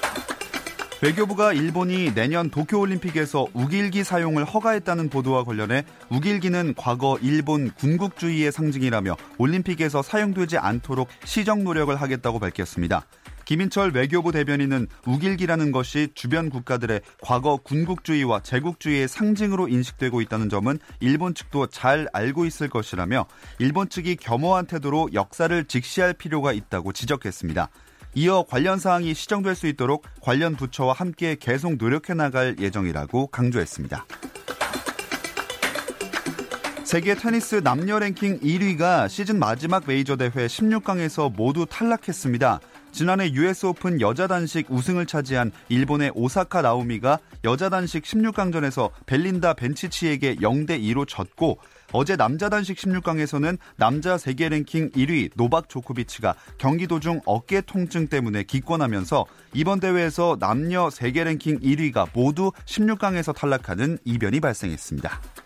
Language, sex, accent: Korean, male, native